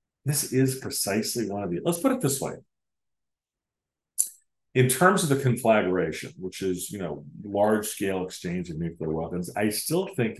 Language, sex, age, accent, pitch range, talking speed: English, male, 40-59, American, 100-130 Hz, 165 wpm